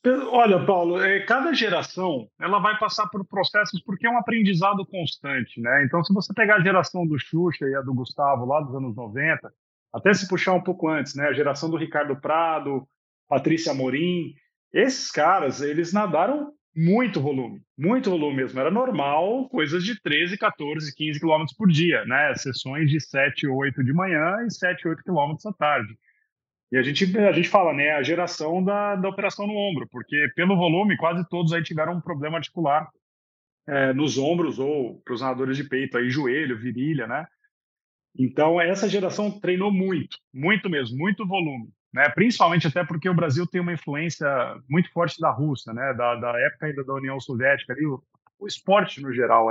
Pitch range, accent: 140-195 Hz, Brazilian